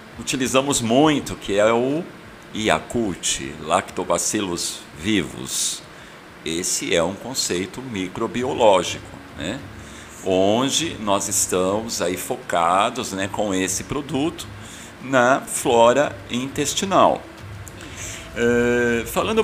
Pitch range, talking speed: 95-120 Hz, 85 wpm